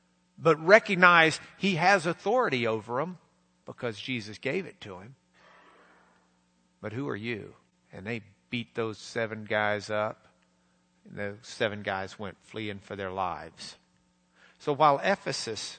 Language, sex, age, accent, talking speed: English, male, 50-69, American, 135 wpm